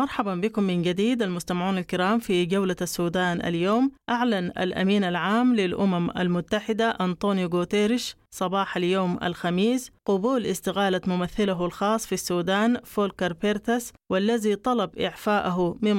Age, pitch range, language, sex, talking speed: 20-39, 180-220 Hz, English, female, 120 wpm